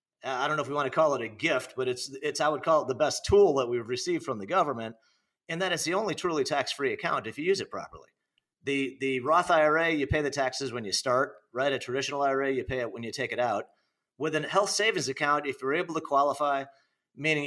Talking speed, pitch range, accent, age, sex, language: 255 wpm, 135-175 Hz, American, 40-59, male, English